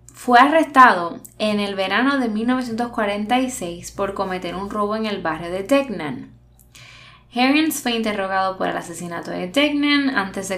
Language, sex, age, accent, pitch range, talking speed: Spanish, female, 10-29, American, 180-240 Hz, 145 wpm